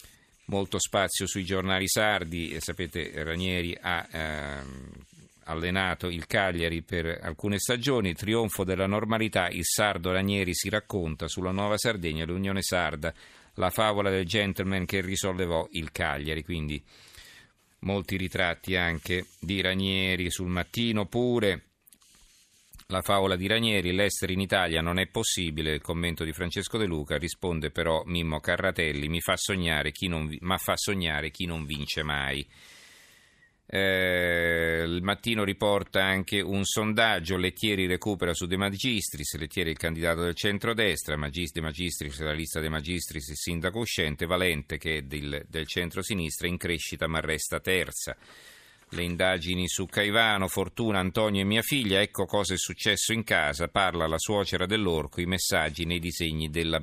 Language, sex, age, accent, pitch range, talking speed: Italian, male, 50-69, native, 80-100 Hz, 150 wpm